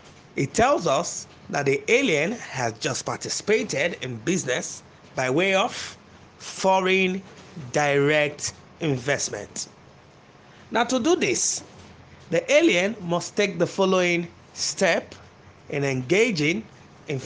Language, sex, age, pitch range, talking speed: English, male, 30-49, 140-175 Hz, 110 wpm